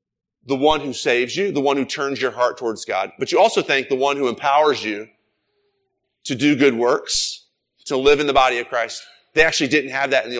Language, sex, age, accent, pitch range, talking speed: English, male, 30-49, American, 120-170 Hz, 235 wpm